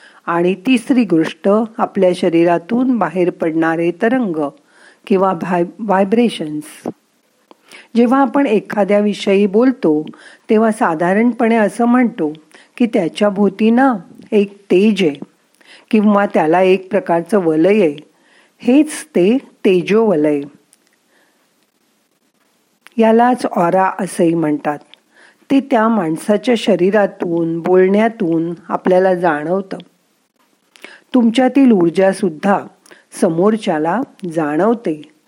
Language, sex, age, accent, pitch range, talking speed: Marathi, female, 50-69, native, 175-235 Hz, 90 wpm